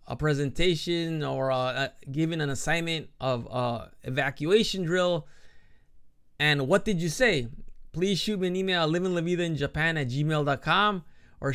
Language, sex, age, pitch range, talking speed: English, male, 20-39, 140-170 Hz, 140 wpm